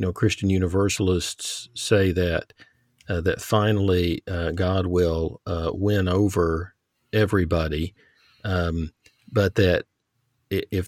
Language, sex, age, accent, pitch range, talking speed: English, male, 50-69, American, 85-105 Hz, 110 wpm